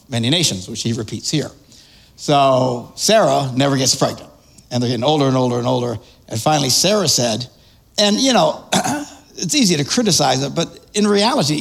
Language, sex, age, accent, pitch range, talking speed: English, male, 60-79, American, 140-205 Hz, 175 wpm